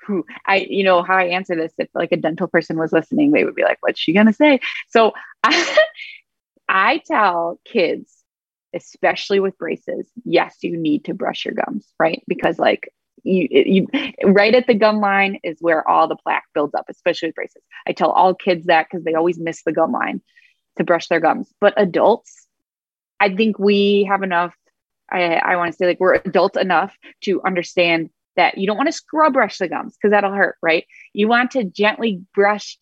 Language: English